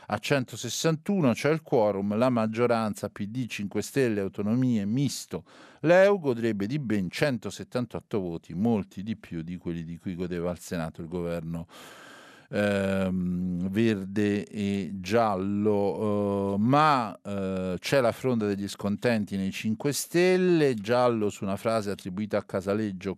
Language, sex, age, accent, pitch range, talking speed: Italian, male, 50-69, native, 95-115 Hz, 130 wpm